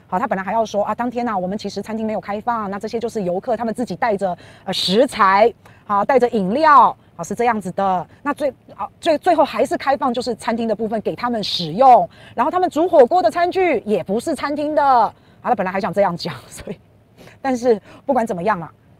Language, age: Chinese, 30-49